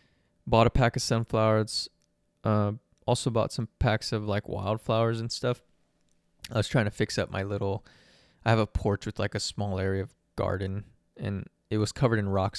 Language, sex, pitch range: English, male, 95-110 Hz